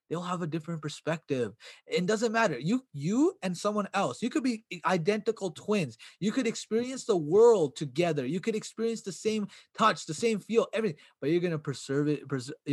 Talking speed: 185 wpm